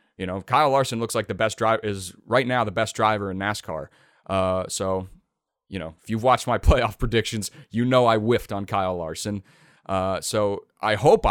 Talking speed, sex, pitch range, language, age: 200 wpm, male, 100-125 Hz, English, 30-49